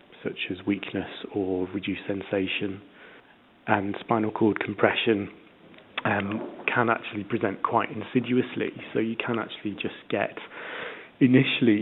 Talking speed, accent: 115 wpm, British